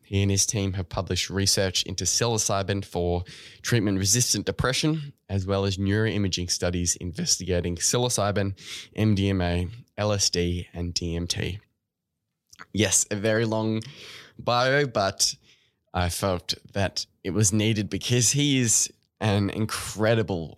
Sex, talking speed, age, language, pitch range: male, 115 wpm, 10-29, English, 90-110 Hz